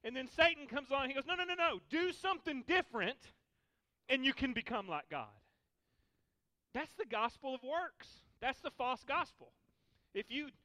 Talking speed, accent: 180 wpm, American